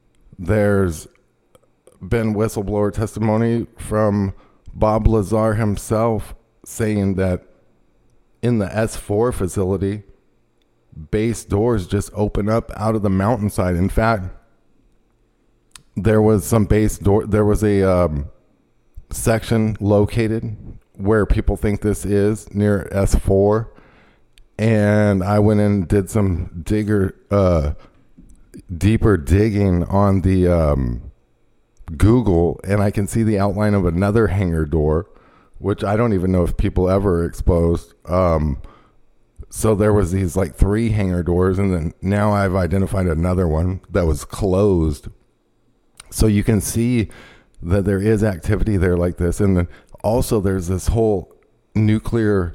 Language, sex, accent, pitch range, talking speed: English, male, American, 90-110 Hz, 130 wpm